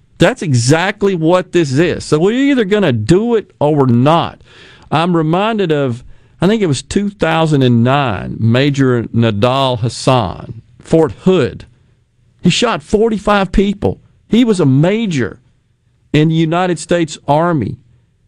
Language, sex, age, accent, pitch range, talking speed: English, male, 50-69, American, 125-205 Hz, 135 wpm